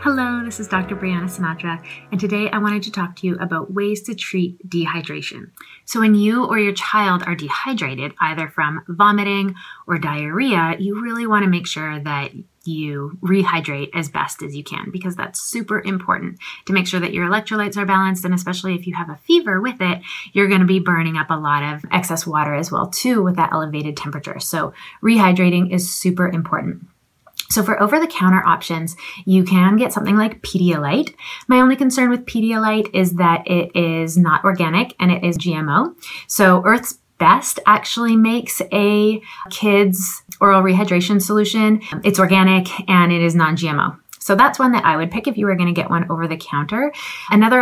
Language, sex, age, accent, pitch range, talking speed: English, female, 30-49, American, 170-210 Hz, 185 wpm